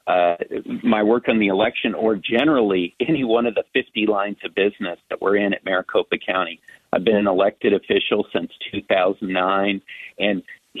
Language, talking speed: English, 165 wpm